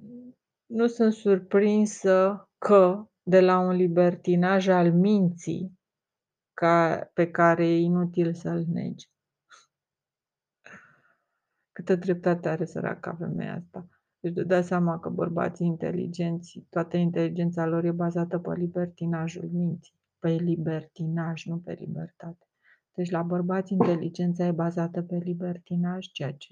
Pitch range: 170-190 Hz